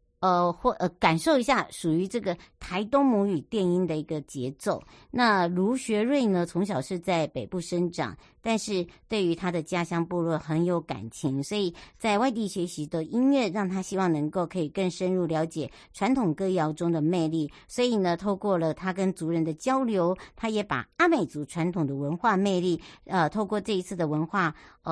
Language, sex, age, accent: Chinese, male, 50-69, American